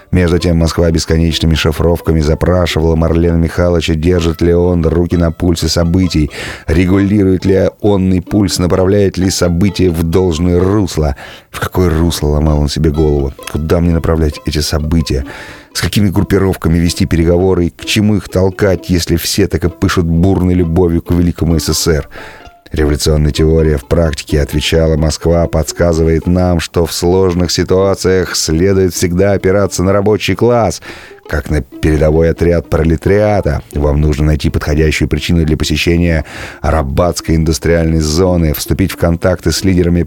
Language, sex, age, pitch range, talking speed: Russian, male, 30-49, 80-90 Hz, 140 wpm